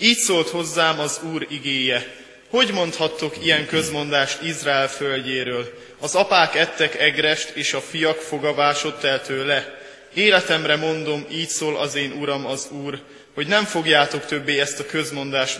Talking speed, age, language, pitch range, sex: 145 wpm, 20-39, Hungarian, 140-160 Hz, male